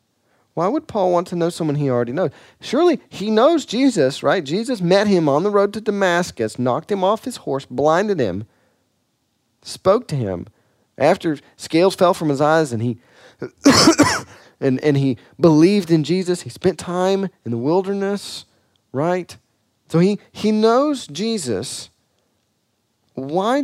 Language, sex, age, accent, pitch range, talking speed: English, male, 40-59, American, 120-185 Hz, 150 wpm